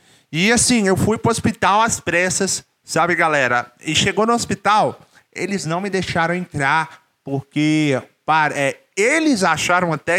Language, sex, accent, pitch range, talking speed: Portuguese, male, Brazilian, 135-185 Hz, 155 wpm